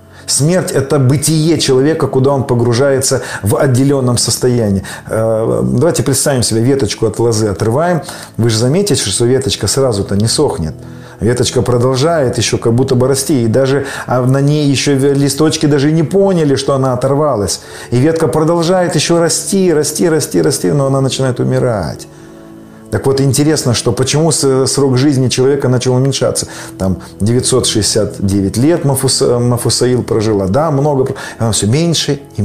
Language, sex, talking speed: Russian, male, 145 wpm